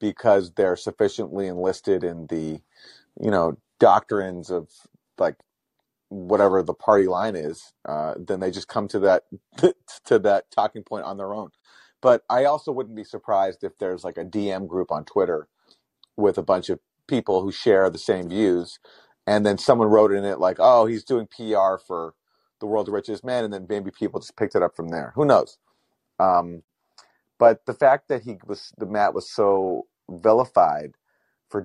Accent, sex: American, male